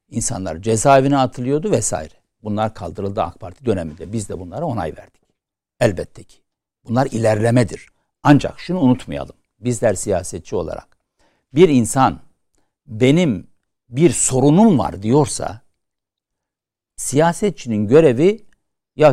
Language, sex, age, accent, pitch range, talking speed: Turkish, male, 60-79, native, 105-155 Hz, 105 wpm